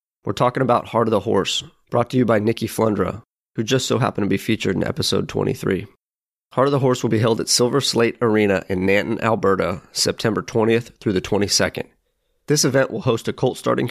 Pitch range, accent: 100-115 Hz, American